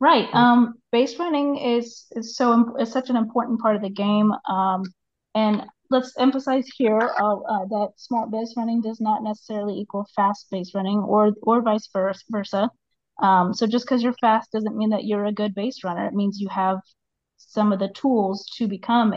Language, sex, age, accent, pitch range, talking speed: English, female, 30-49, American, 200-230 Hz, 190 wpm